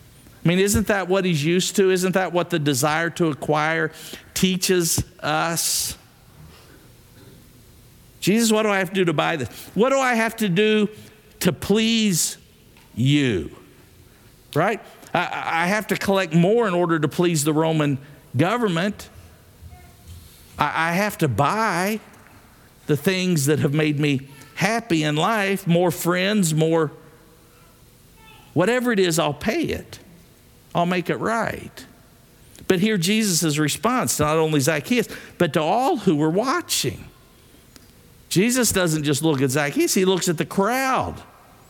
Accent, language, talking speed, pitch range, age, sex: American, English, 145 wpm, 140-190 Hz, 50-69, male